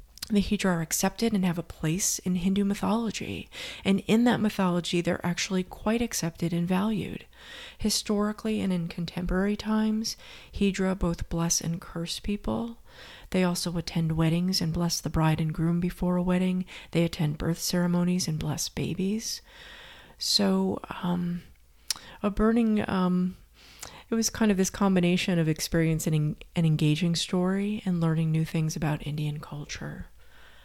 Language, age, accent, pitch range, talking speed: English, 30-49, American, 165-200 Hz, 145 wpm